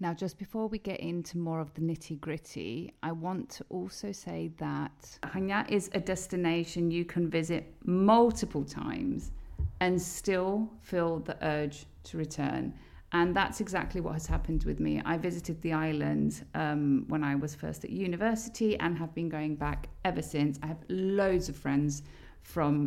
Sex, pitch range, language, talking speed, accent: female, 155-195 Hz, Greek, 170 wpm, British